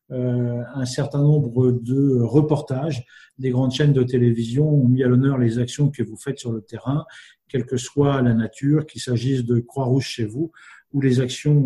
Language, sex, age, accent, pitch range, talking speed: French, male, 50-69, French, 125-150 Hz, 190 wpm